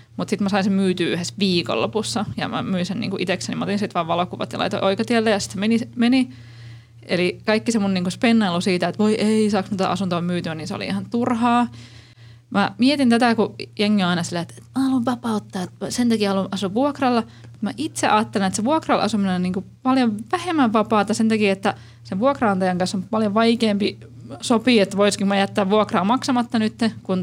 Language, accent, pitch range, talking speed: Finnish, native, 180-220 Hz, 205 wpm